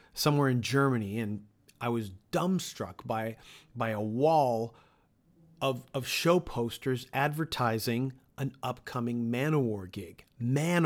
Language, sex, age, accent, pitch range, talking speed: English, male, 40-59, American, 115-145 Hz, 115 wpm